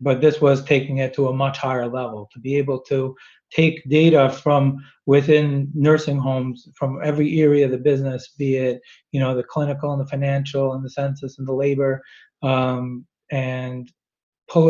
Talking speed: 180 wpm